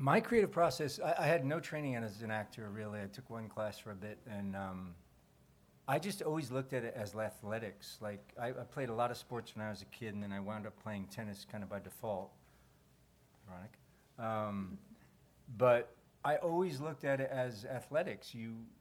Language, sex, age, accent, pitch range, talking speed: English, male, 40-59, American, 105-130 Hz, 200 wpm